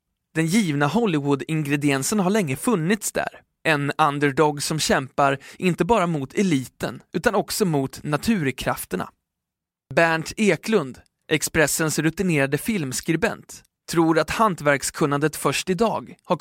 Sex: male